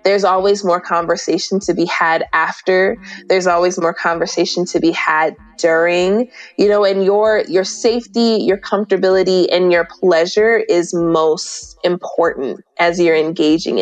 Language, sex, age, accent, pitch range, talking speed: English, female, 20-39, American, 175-230 Hz, 145 wpm